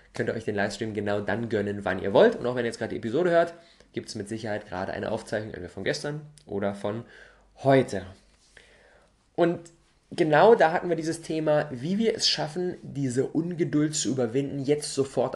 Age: 20-39